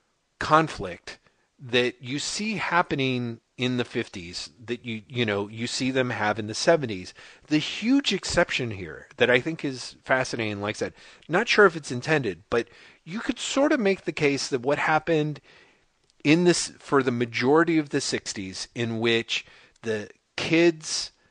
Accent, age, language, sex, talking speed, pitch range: American, 40-59, English, male, 165 wpm, 120-160 Hz